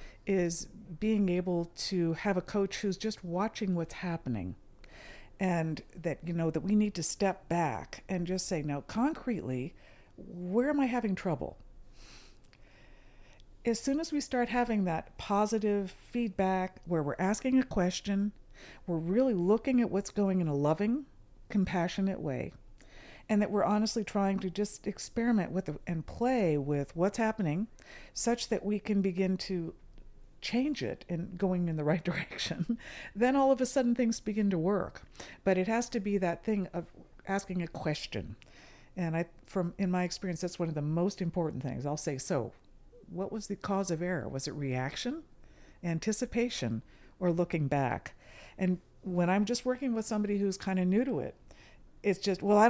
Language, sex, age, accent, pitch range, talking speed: English, female, 50-69, American, 165-215 Hz, 170 wpm